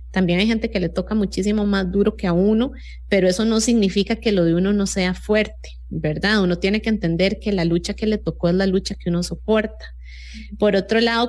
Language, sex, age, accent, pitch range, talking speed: English, female, 30-49, Colombian, 170-205 Hz, 230 wpm